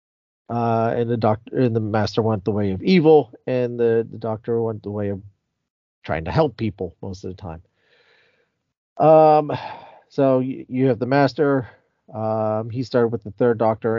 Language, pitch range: English, 110-130 Hz